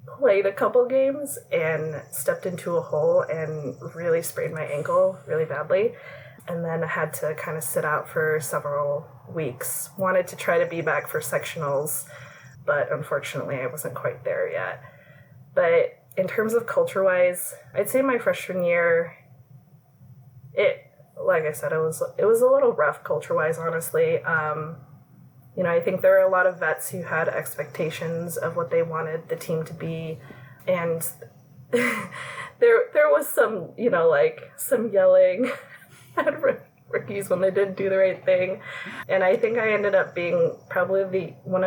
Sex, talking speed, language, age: female, 175 wpm, English, 20-39